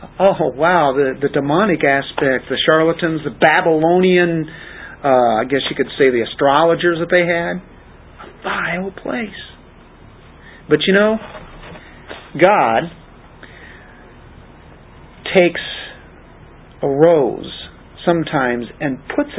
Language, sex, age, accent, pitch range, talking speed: English, male, 50-69, American, 135-165 Hz, 105 wpm